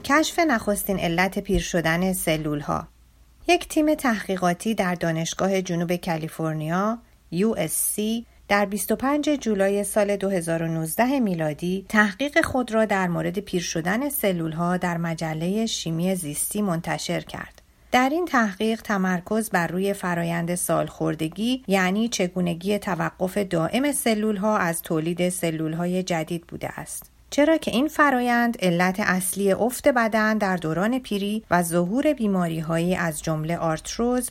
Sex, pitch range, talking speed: female, 170-220 Hz, 130 wpm